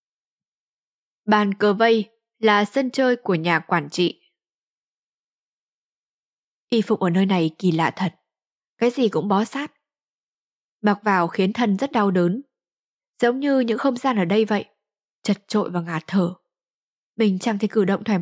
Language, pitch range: Vietnamese, 200-255 Hz